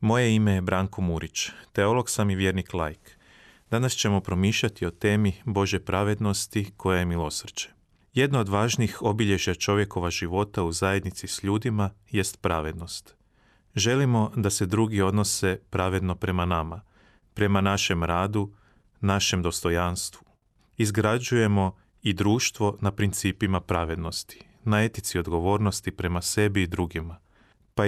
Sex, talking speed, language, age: male, 130 wpm, Croatian, 30-49